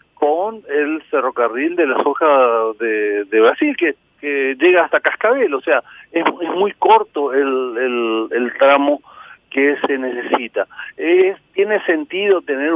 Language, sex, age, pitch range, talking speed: Spanish, male, 50-69, 135-225 Hz, 140 wpm